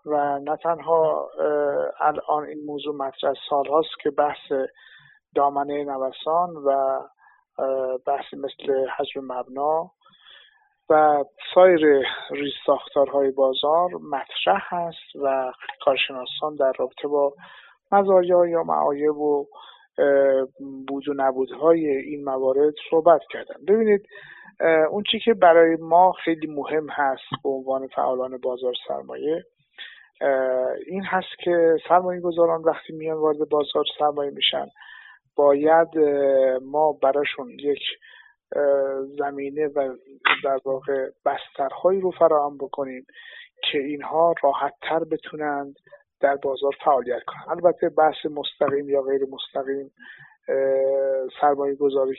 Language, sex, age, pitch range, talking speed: Persian, male, 50-69, 135-165 Hz, 105 wpm